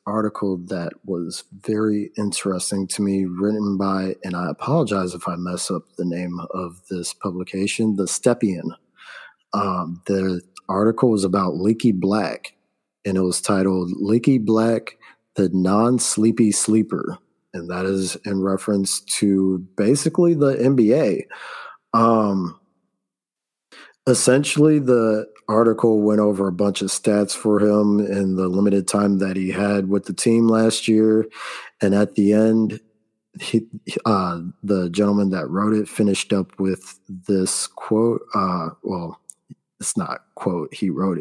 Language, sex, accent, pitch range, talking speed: English, male, American, 95-110 Hz, 140 wpm